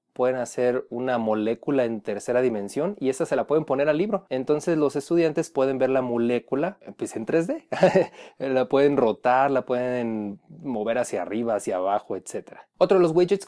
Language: Spanish